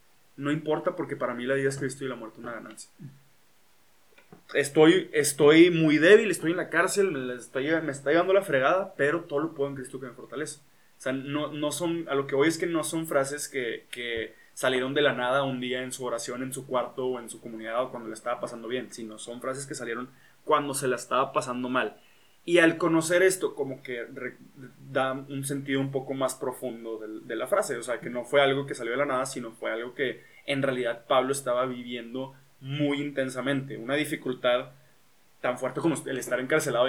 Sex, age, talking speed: male, 20-39, 220 wpm